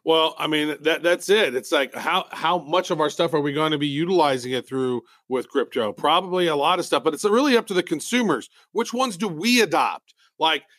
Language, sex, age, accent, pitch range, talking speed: English, male, 40-59, American, 150-215 Hz, 235 wpm